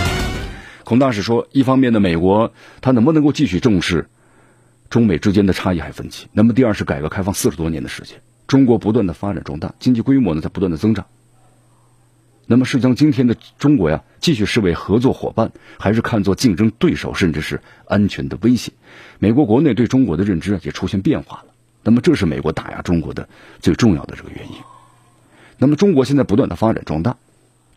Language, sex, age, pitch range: Chinese, male, 50-69, 90-120 Hz